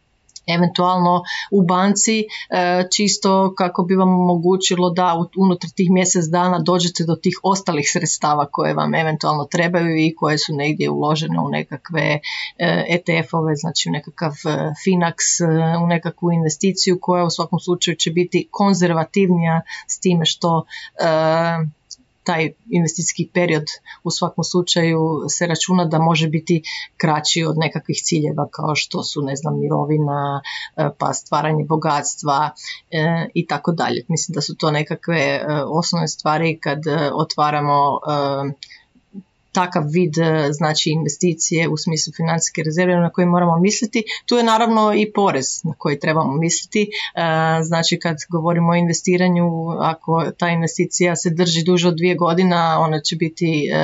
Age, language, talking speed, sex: 30-49, Croatian, 135 wpm, female